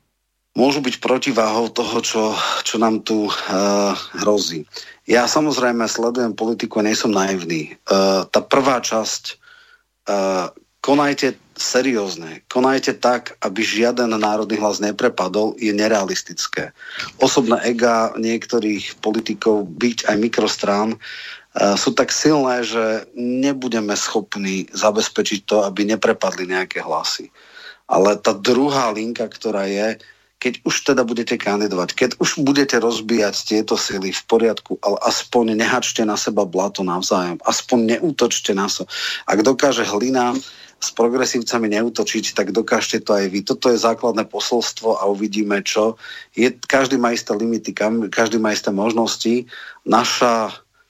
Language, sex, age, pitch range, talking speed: Slovak, male, 40-59, 105-120 Hz, 130 wpm